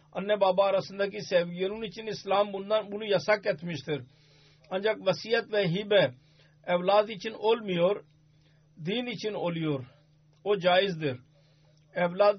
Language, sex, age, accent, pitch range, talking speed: Turkish, male, 50-69, Indian, 155-205 Hz, 105 wpm